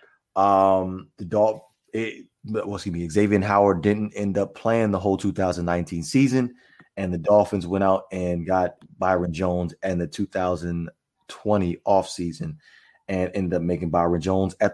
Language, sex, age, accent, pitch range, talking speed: English, male, 30-49, American, 95-115 Hz, 145 wpm